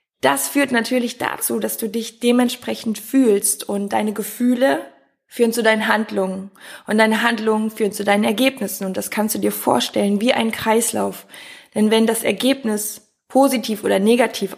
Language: German